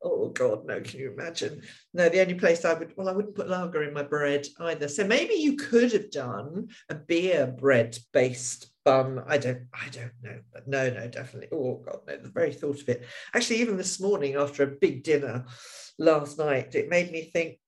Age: 50-69